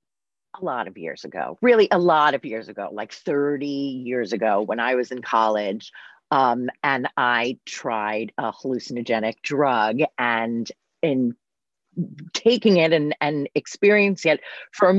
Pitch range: 145-210 Hz